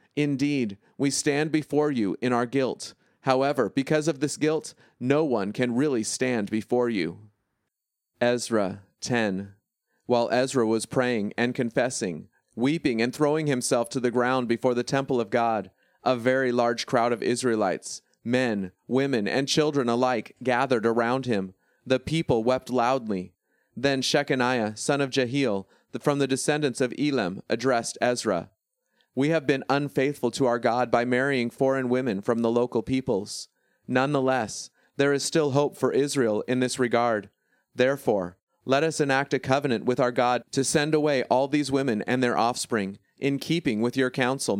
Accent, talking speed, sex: American, 160 wpm, male